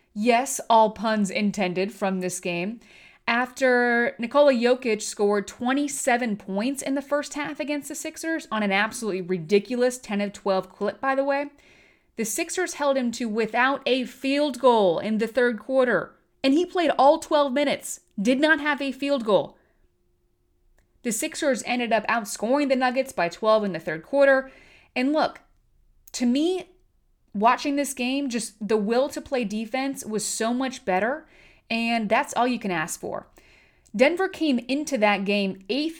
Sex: female